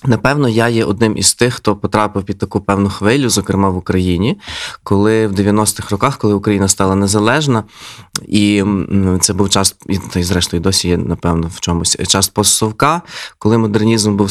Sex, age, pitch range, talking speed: male, 20-39, 95-110 Hz, 165 wpm